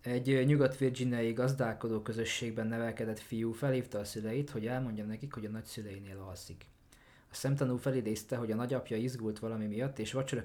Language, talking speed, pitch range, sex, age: Hungarian, 155 wpm, 105-125 Hz, male, 20-39